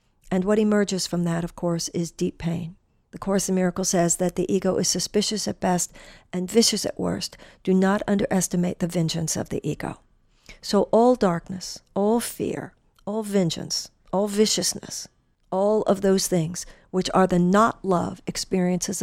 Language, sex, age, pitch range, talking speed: English, female, 50-69, 180-210 Hz, 165 wpm